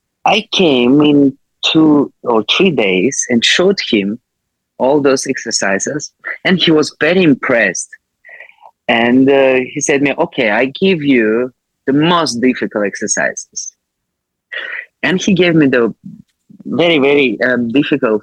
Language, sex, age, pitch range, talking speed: English, male, 30-49, 110-150 Hz, 130 wpm